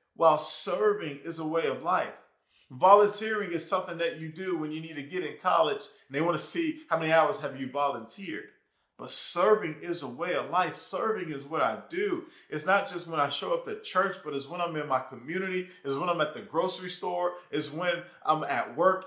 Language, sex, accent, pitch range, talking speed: English, male, American, 145-190 Hz, 220 wpm